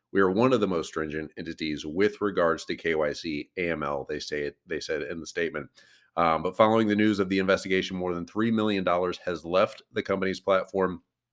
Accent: American